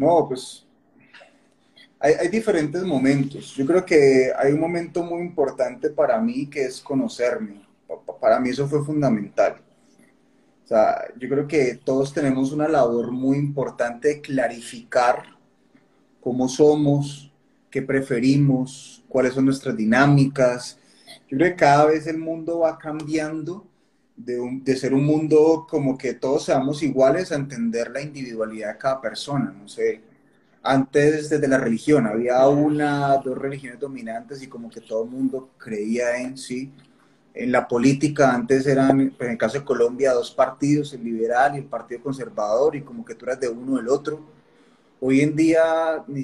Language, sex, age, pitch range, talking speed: Spanish, male, 30-49, 130-155 Hz, 160 wpm